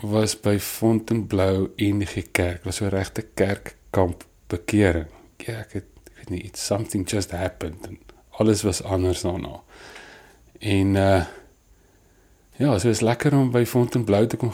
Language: English